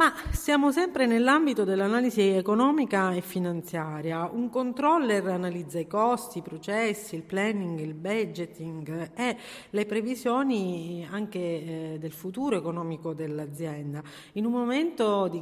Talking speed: 120 wpm